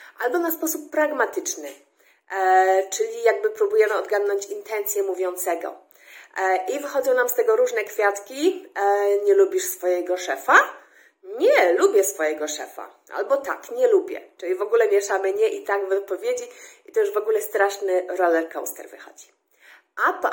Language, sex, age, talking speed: English, female, 30-49, 155 wpm